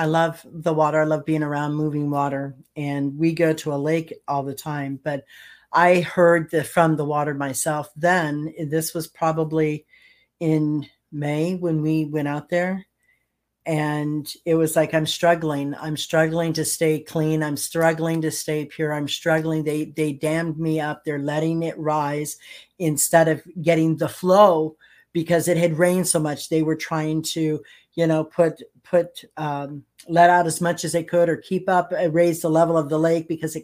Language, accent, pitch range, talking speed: English, American, 155-170 Hz, 185 wpm